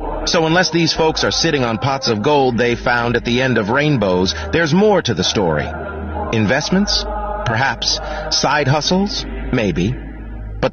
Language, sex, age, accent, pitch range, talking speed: English, male, 30-49, American, 115-155 Hz, 155 wpm